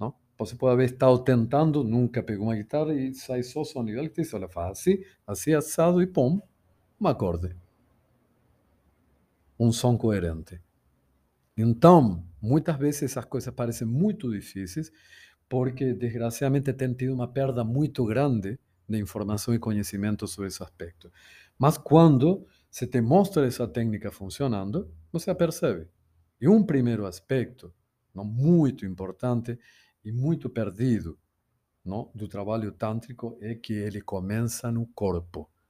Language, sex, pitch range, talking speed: Portuguese, male, 95-130 Hz, 130 wpm